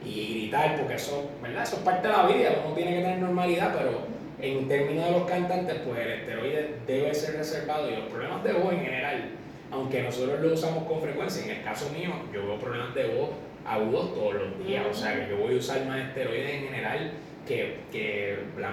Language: Spanish